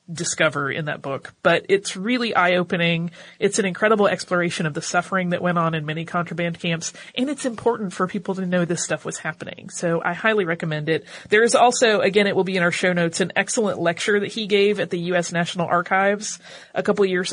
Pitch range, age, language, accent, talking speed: 170-200 Hz, 30-49, English, American, 220 wpm